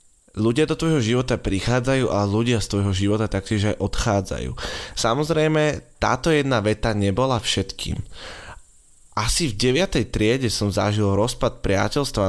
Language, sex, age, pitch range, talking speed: Slovak, male, 20-39, 95-120 Hz, 130 wpm